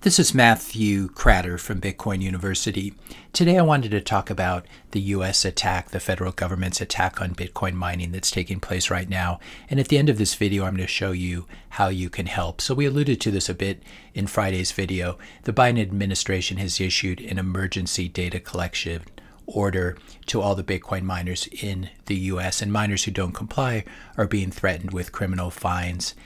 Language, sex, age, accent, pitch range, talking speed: English, male, 40-59, American, 90-105 Hz, 185 wpm